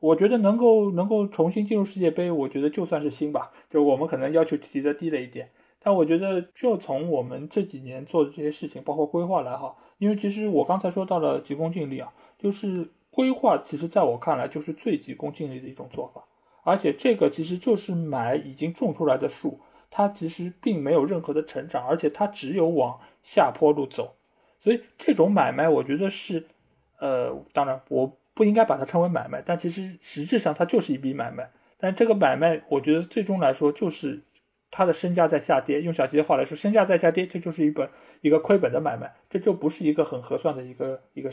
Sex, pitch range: male, 150-195 Hz